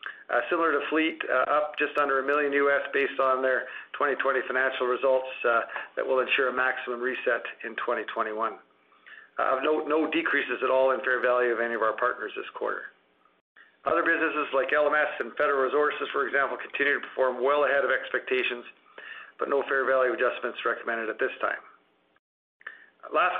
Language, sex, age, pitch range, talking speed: English, male, 50-69, 130-150 Hz, 175 wpm